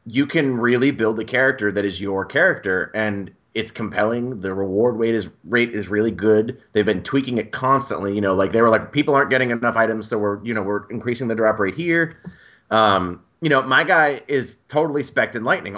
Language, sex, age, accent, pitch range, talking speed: English, male, 30-49, American, 105-130 Hz, 215 wpm